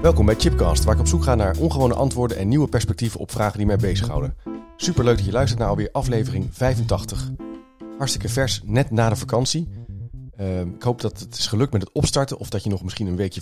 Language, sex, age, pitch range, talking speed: Dutch, male, 40-59, 95-120 Hz, 230 wpm